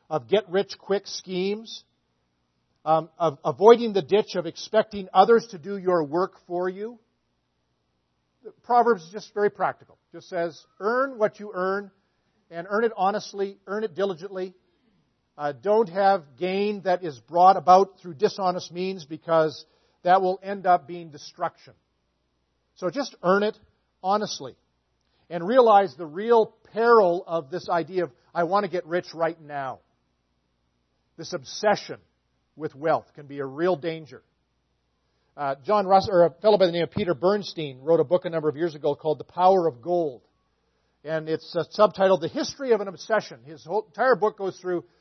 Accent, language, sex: American, English, male